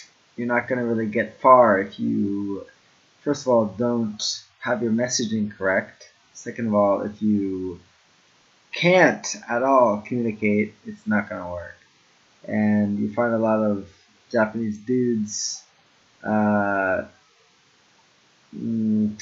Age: 20-39